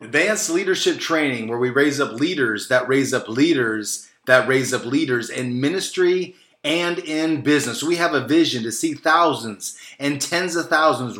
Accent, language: American, English